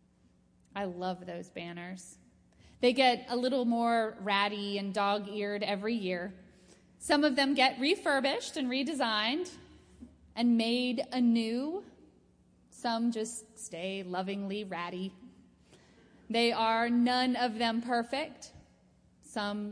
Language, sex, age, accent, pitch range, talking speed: English, female, 20-39, American, 205-255 Hz, 110 wpm